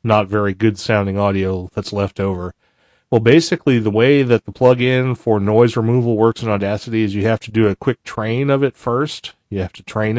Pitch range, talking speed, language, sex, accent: 100-120 Hz, 210 wpm, English, male, American